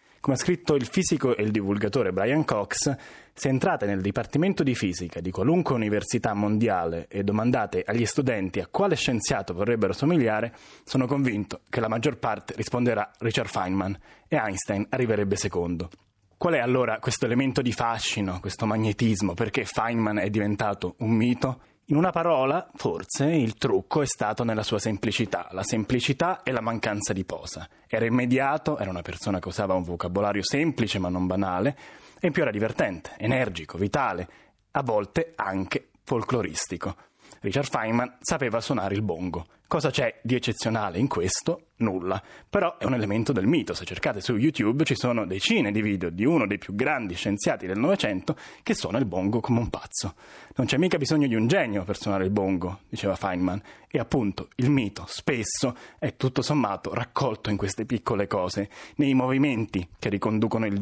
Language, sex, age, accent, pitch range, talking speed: Italian, male, 20-39, native, 100-130 Hz, 170 wpm